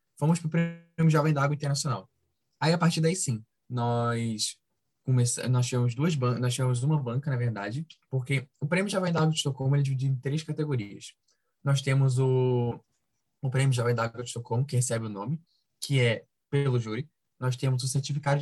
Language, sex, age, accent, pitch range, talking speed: Portuguese, male, 10-29, Brazilian, 125-155 Hz, 180 wpm